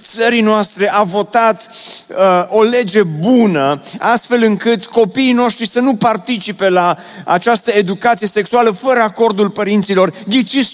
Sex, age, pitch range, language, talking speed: male, 30-49, 175-225 Hz, Romanian, 130 wpm